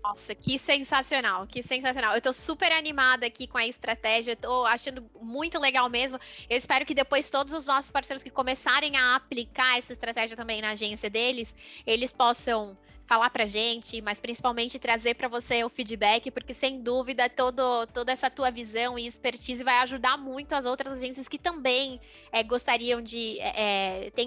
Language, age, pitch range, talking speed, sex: Portuguese, 20-39, 230-260 Hz, 170 wpm, female